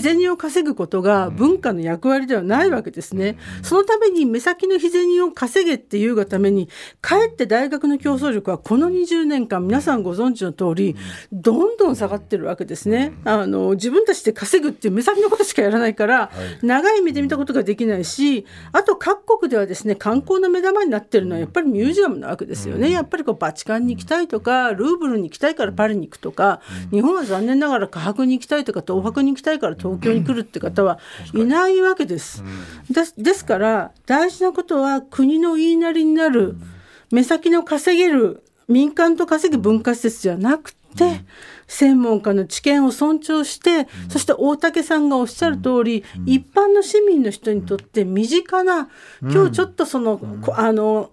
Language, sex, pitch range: Japanese, female, 205-330 Hz